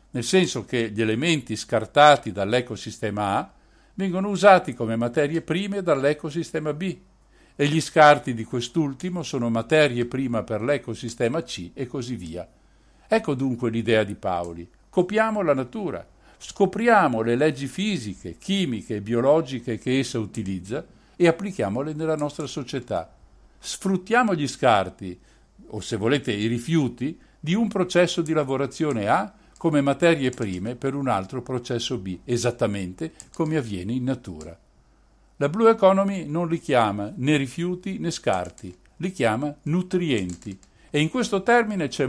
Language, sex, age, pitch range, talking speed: Italian, male, 60-79, 115-170 Hz, 140 wpm